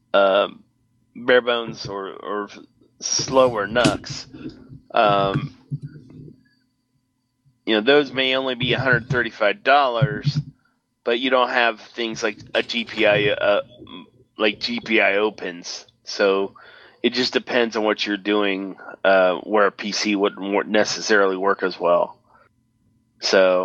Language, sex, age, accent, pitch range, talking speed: English, male, 30-49, American, 105-130 Hz, 110 wpm